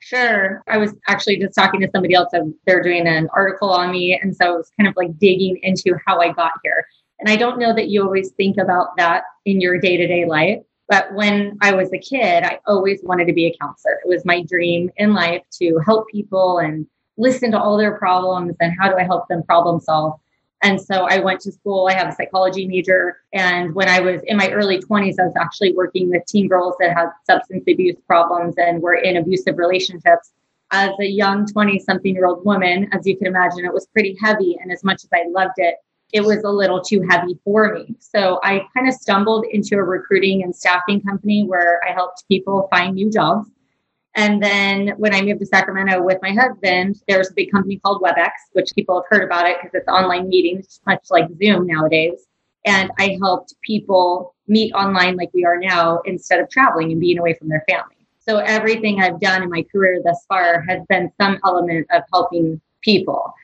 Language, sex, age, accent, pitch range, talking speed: English, female, 20-39, American, 175-200 Hz, 215 wpm